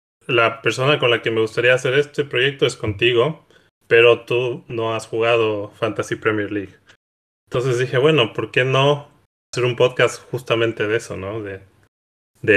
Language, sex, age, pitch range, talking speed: Spanish, male, 20-39, 105-130 Hz, 165 wpm